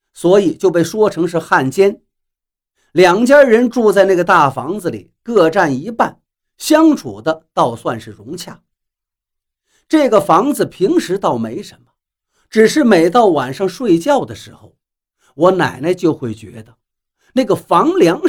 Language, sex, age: Chinese, male, 50-69